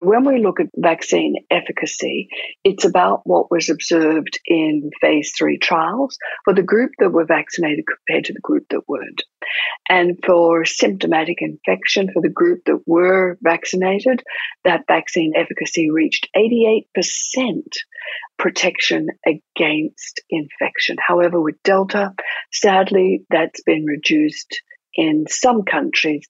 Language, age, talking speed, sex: English, 50-69, 125 wpm, female